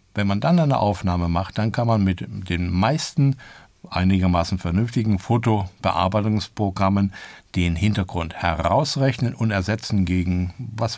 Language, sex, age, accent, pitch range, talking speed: German, male, 60-79, German, 90-115 Hz, 120 wpm